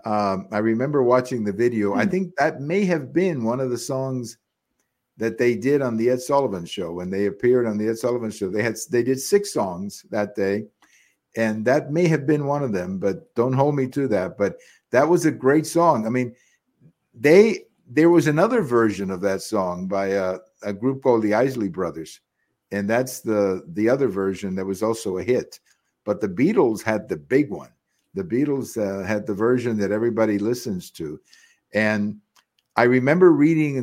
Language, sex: English, male